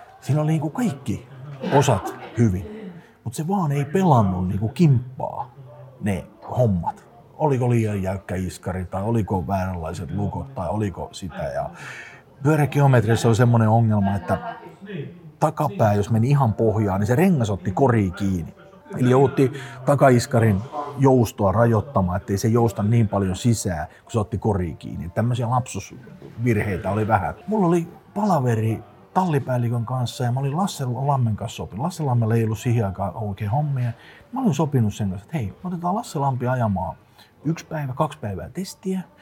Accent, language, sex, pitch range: native, Finnish, male, 105-155 Hz